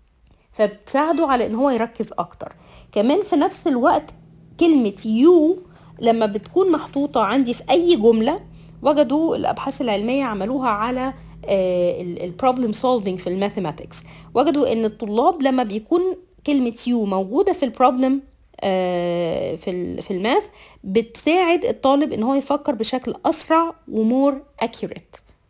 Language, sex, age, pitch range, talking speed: Arabic, female, 30-49, 205-280 Hz, 120 wpm